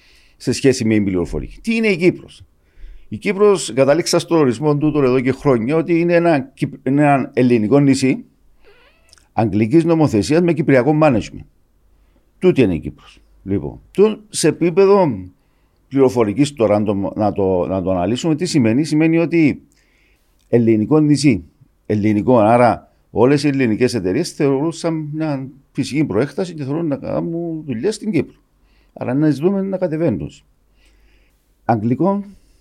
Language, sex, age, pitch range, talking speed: Greek, male, 50-69, 100-165 Hz, 140 wpm